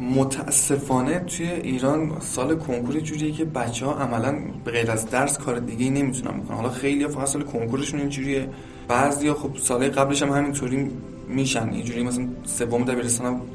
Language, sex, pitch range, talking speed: Persian, male, 120-145 Hz, 160 wpm